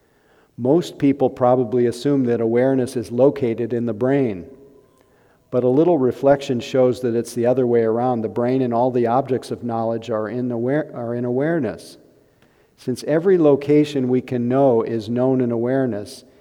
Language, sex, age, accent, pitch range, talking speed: English, male, 50-69, American, 120-135 Hz, 160 wpm